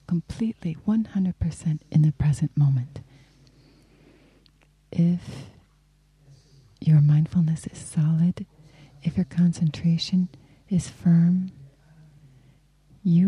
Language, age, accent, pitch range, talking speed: English, 30-49, American, 140-175 Hz, 75 wpm